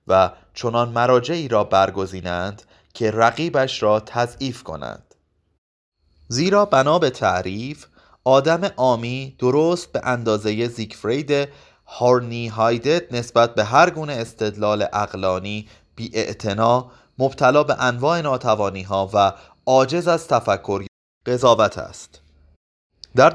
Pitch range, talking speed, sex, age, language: 100-135 Hz, 105 wpm, male, 30-49, Persian